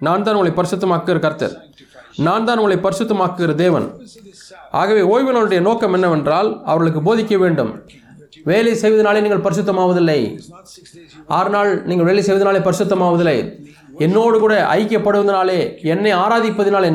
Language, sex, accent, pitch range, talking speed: Tamil, male, native, 175-215 Hz, 110 wpm